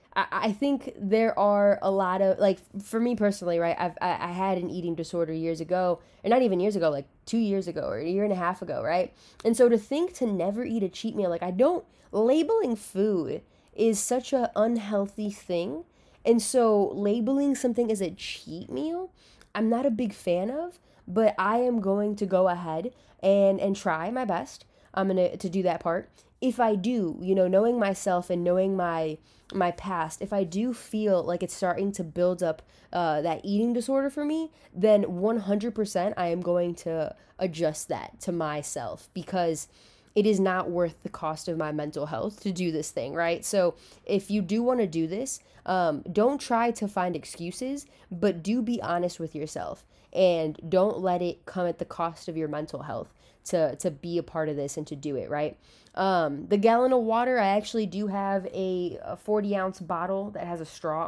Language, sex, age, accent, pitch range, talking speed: English, female, 20-39, American, 170-215 Hz, 200 wpm